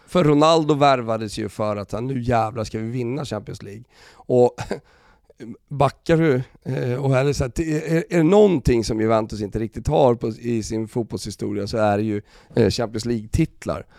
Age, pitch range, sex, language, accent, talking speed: 30-49, 110-135 Hz, male, Swedish, native, 150 wpm